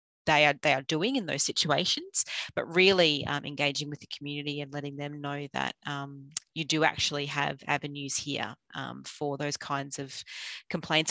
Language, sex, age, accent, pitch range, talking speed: English, female, 30-49, Australian, 145-160 Hz, 175 wpm